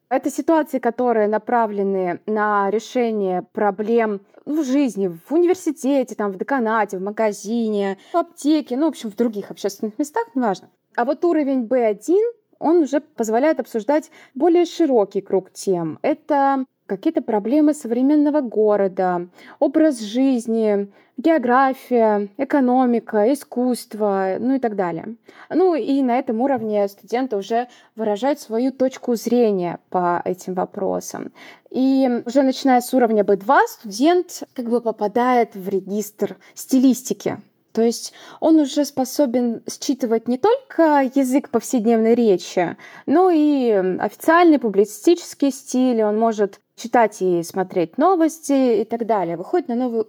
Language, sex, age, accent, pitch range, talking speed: Russian, female, 20-39, native, 210-280 Hz, 130 wpm